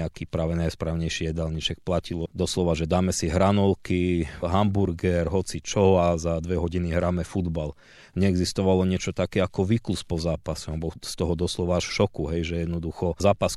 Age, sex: 30-49, male